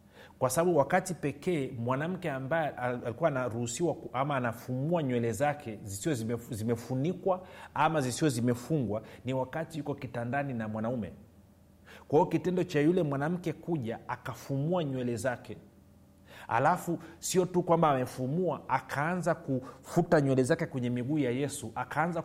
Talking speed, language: 130 wpm, Swahili